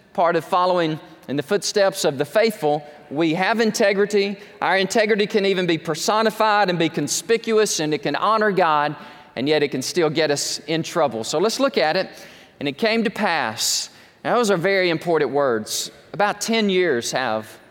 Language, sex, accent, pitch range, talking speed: English, male, American, 165-215 Hz, 180 wpm